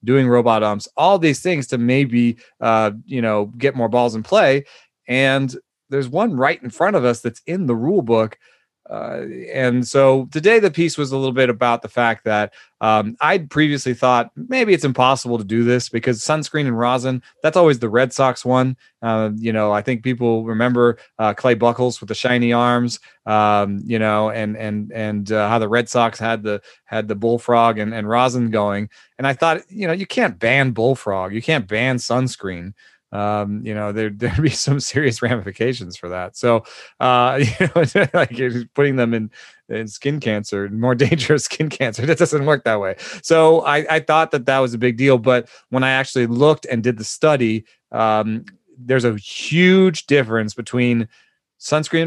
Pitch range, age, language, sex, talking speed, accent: 115-160 Hz, 30-49, English, male, 195 wpm, American